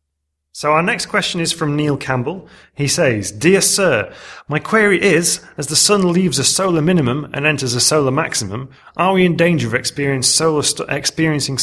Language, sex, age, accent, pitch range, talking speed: English, male, 30-49, British, 120-160 Hz, 170 wpm